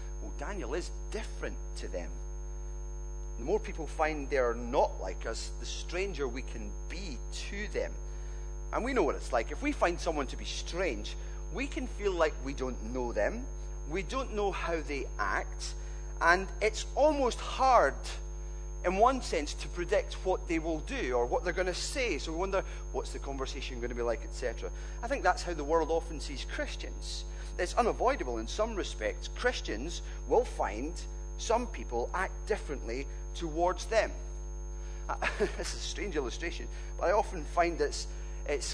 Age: 40-59